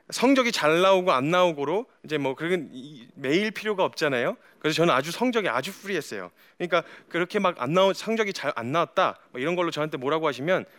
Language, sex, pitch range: Korean, male, 150-215 Hz